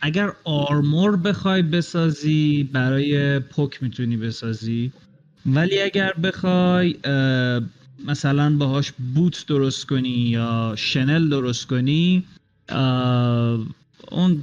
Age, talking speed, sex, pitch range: 30-49, 85 wpm, male, 115-150 Hz